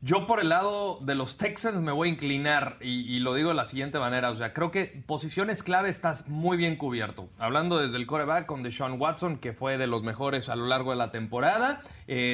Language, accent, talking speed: Spanish, Mexican, 235 wpm